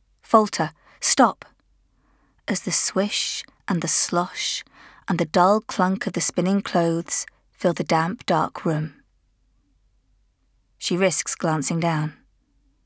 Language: English